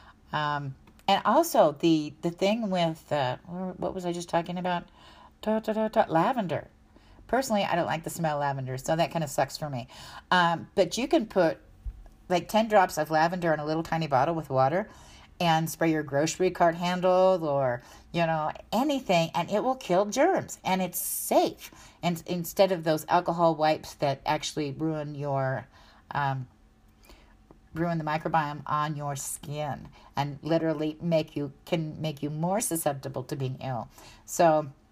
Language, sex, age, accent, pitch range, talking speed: English, female, 50-69, American, 150-185 Hz, 165 wpm